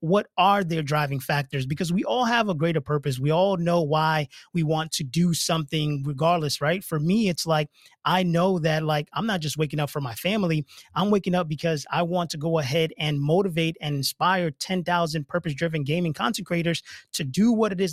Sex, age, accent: male, 30-49, American